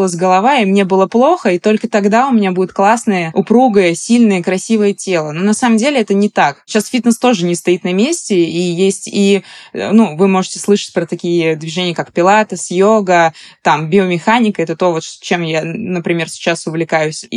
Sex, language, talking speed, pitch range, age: female, Russian, 190 wpm, 175-215 Hz, 20-39